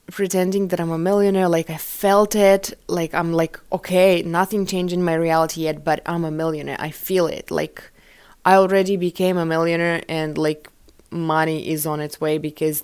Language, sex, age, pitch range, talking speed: English, female, 20-39, 160-195 Hz, 185 wpm